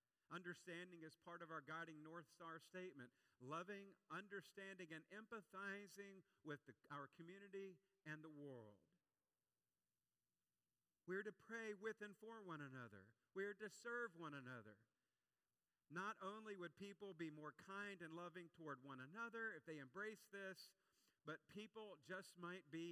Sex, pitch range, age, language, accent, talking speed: male, 145-190 Hz, 50-69, English, American, 140 wpm